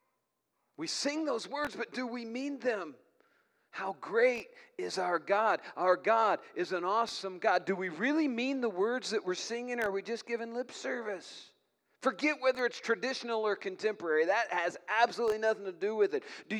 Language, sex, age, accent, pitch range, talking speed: English, male, 40-59, American, 180-250 Hz, 185 wpm